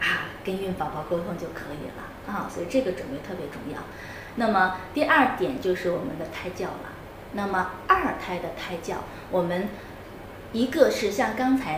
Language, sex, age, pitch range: Chinese, female, 20-39, 180-260 Hz